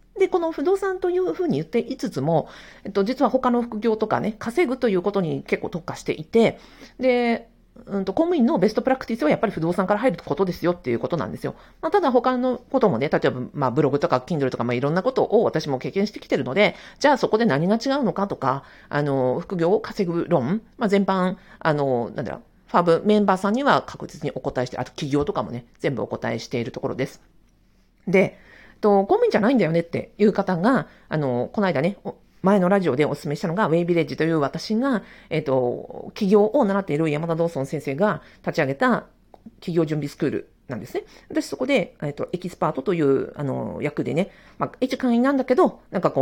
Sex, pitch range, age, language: female, 145-230 Hz, 40-59, Japanese